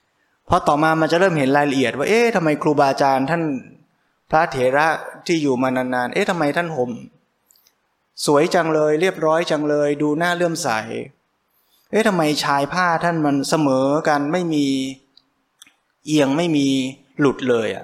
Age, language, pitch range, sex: 20-39, Thai, 130-160 Hz, male